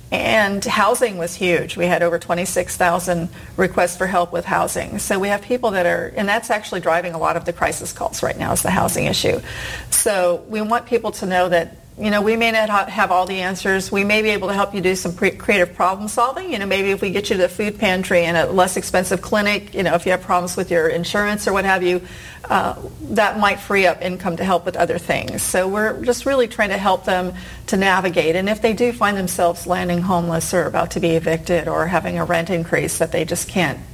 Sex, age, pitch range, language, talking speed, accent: female, 40-59, 170-200 Hz, English, 240 wpm, American